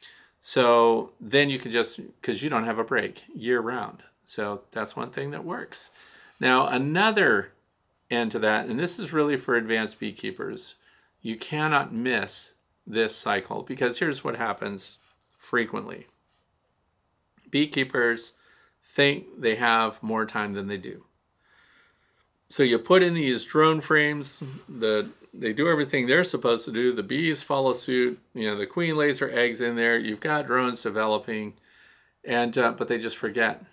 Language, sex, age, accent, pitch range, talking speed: English, male, 40-59, American, 110-135 Hz, 155 wpm